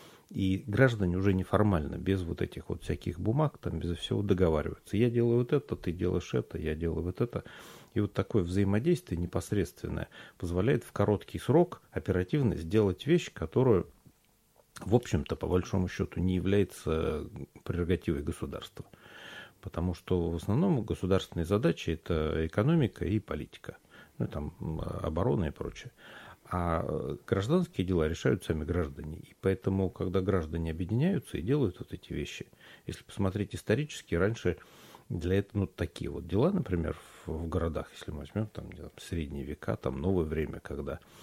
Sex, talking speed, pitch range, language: male, 145 wpm, 85-105 Hz, Russian